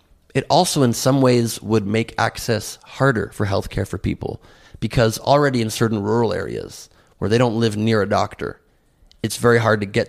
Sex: male